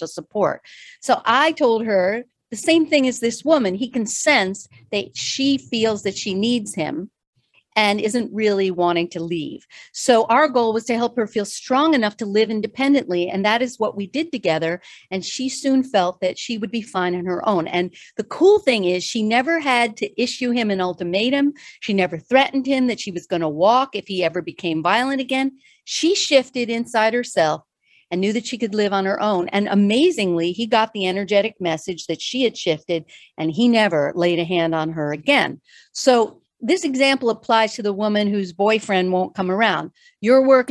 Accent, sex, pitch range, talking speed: American, female, 185-250 Hz, 200 wpm